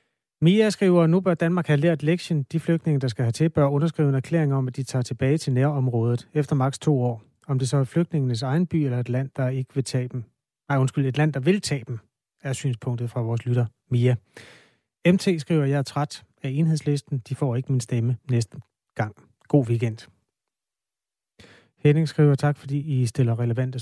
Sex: male